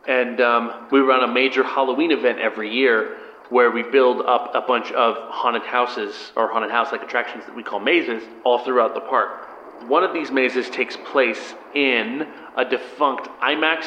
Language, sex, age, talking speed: English, male, 30-49, 175 wpm